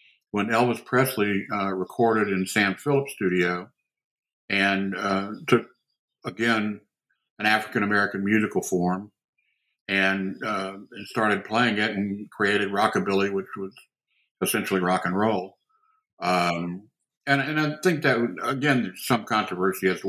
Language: English